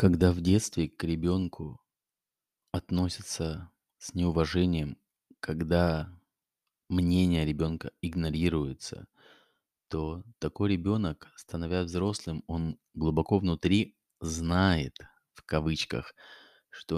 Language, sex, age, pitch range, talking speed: Russian, male, 20-39, 80-90 Hz, 85 wpm